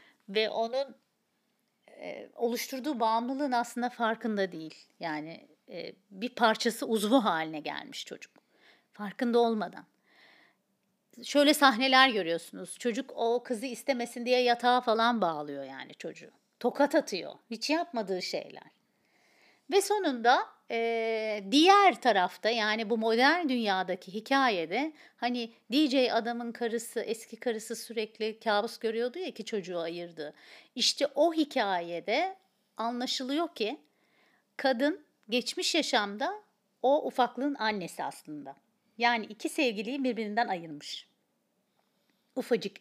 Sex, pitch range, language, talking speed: female, 215-275 Hz, Turkish, 110 wpm